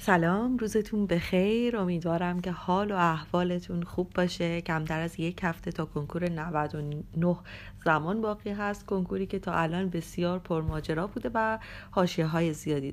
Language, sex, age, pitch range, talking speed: Persian, female, 30-49, 170-215 Hz, 140 wpm